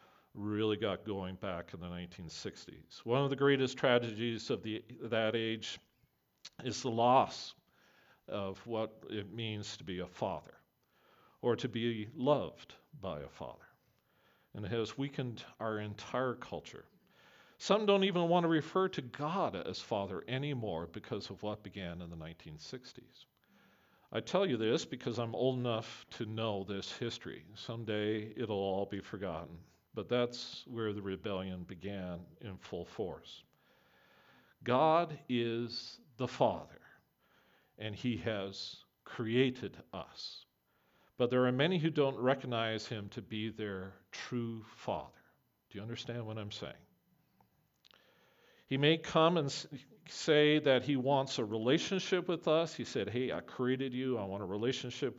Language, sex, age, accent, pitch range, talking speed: English, male, 50-69, American, 100-130 Hz, 145 wpm